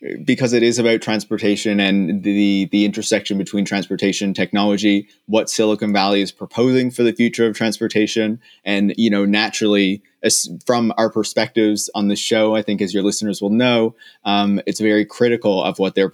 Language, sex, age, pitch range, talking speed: English, male, 20-39, 95-110 Hz, 180 wpm